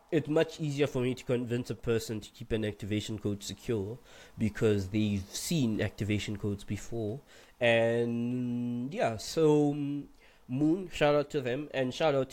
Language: English